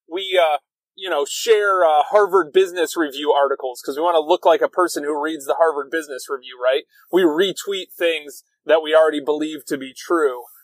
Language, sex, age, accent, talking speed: English, male, 30-49, American, 195 wpm